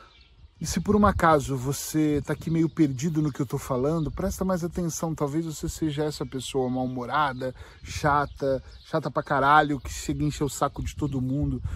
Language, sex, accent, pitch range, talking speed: Portuguese, male, Brazilian, 140-170 Hz, 195 wpm